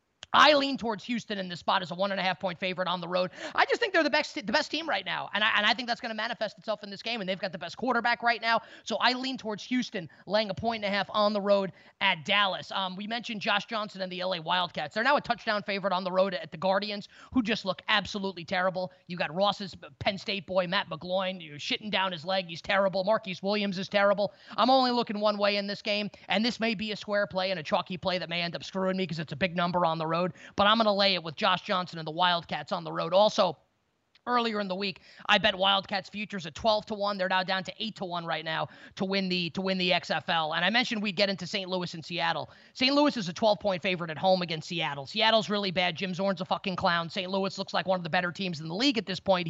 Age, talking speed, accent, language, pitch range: 20-39, 270 wpm, American, English, 185-220 Hz